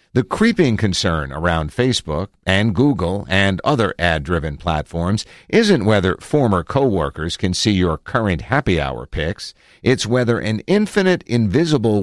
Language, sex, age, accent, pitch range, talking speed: English, male, 50-69, American, 90-125 Hz, 135 wpm